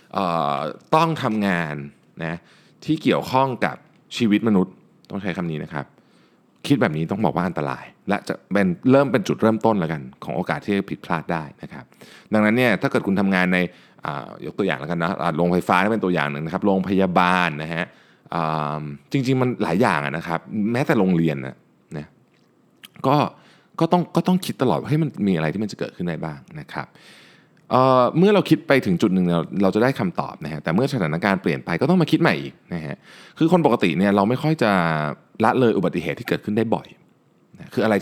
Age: 20-39